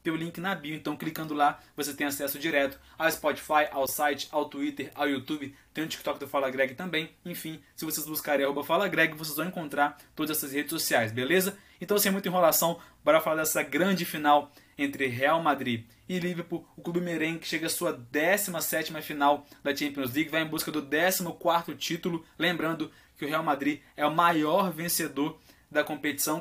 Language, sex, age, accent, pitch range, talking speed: Portuguese, male, 20-39, Brazilian, 145-170 Hz, 195 wpm